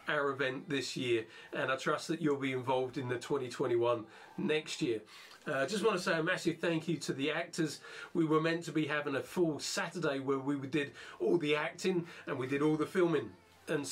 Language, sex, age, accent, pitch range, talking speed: English, male, 40-59, British, 140-175 Hz, 215 wpm